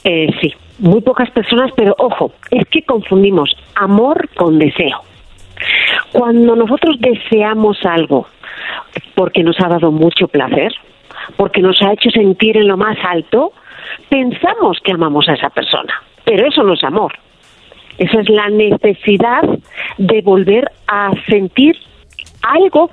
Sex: female